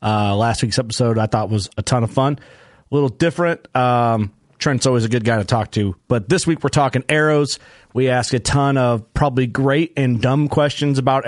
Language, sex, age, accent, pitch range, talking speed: English, male, 30-49, American, 115-140 Hz, 215 wpm